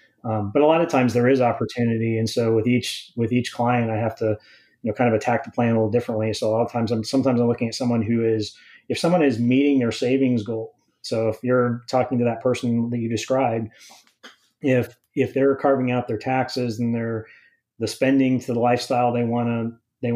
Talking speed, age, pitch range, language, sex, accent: 230 wpm, 30-49, 115-125 Hz, English, male, American